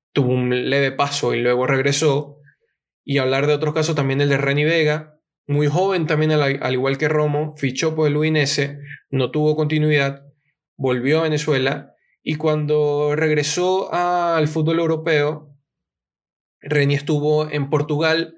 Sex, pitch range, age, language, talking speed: male, 130-150 Hz, 20-39, Spanish, 145 wpm